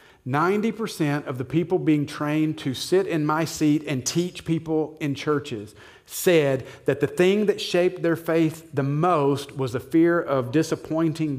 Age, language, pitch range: 40-59, English, 140-190 Hz